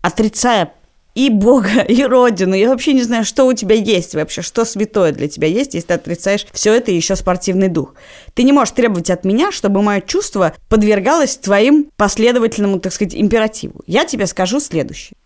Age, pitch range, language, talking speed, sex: 20-39, 170-230 Hz, Russian, 180 wpm, female